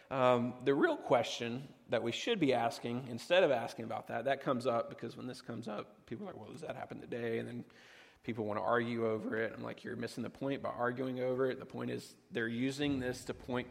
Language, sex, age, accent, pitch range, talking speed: English, male, 30-49, American, 115-135 Hz, 245 wpm